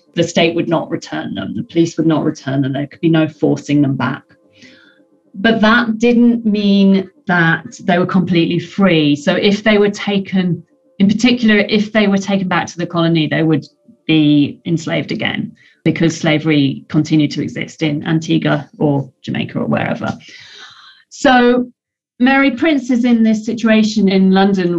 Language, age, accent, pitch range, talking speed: English, 40-59, British, 165-205 Hz, 165 wpm